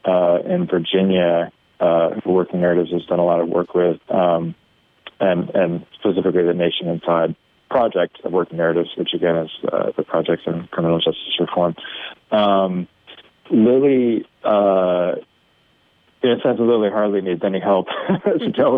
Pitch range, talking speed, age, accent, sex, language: 85-100 Hz, 150 wpm, 20-39, American, male, English